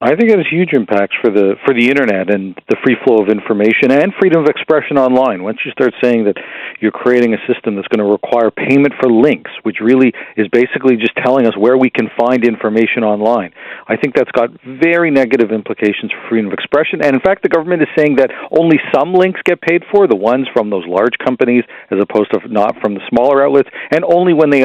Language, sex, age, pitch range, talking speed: English, male, 40-59, 105-140 Hz, 230 wpm